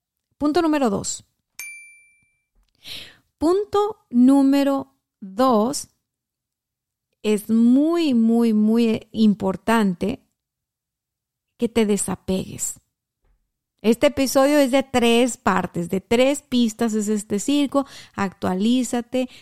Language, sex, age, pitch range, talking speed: Spanish, female, 30-49, 200-260 Hz, 85 wpm